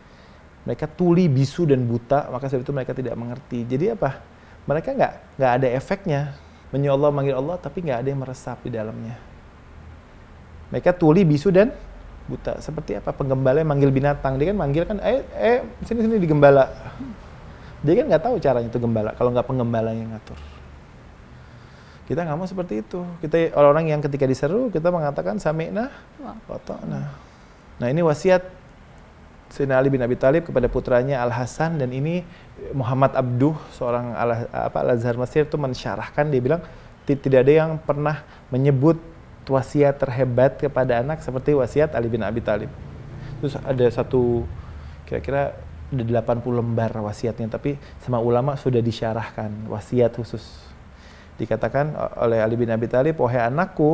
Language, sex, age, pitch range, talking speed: Indonesian, male, 20-39, 115-150 Hz, 145 wpm